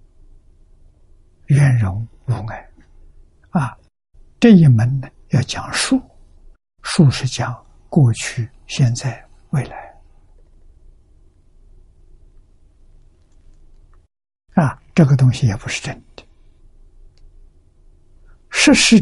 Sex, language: male, Chinese